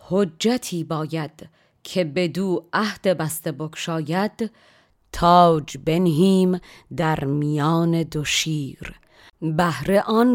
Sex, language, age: female, Persian, 30-49